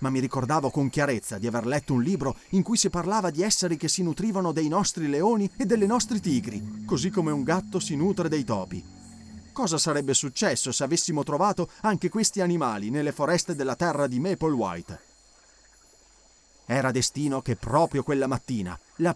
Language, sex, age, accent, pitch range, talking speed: Italian, male, 30-49, native, 120-180 Hz, 180 wpm